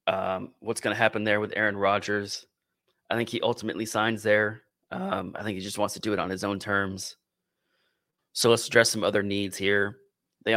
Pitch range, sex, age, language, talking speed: 95-110 Hz, male, 30-49, English, 205 wpm